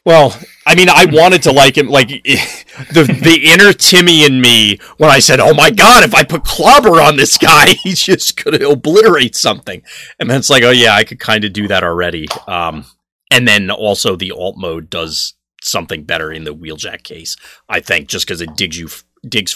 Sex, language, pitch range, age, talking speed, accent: male, English, 85-135 Hz, 30-49, 215 wpm, American